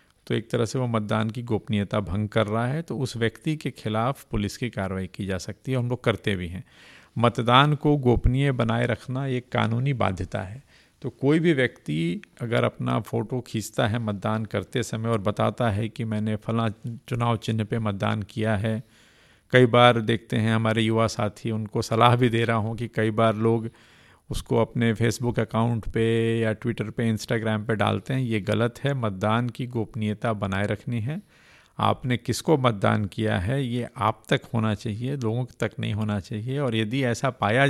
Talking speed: 190 wpm